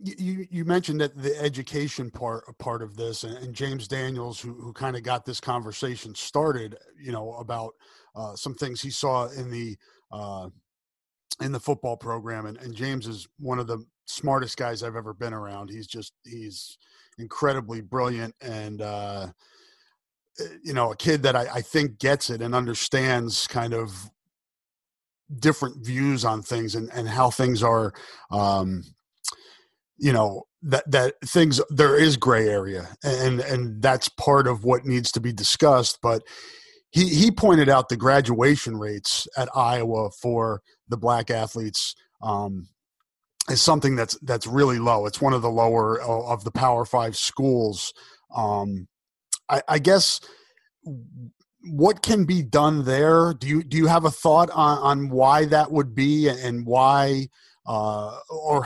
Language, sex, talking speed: English, male, 160 wpm